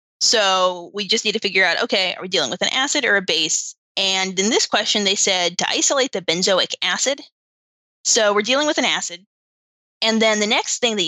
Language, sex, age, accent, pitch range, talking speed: English, female, 20-39, American, 185-230 Hz, 215 wpm